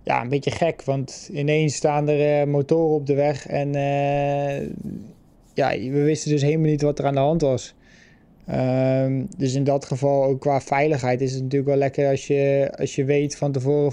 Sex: male